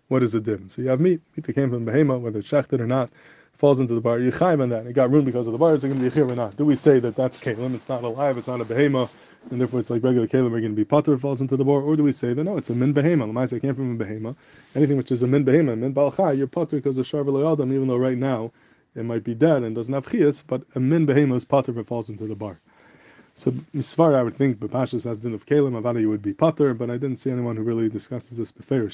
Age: 20-39